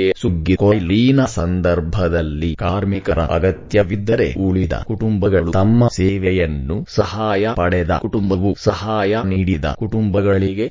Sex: male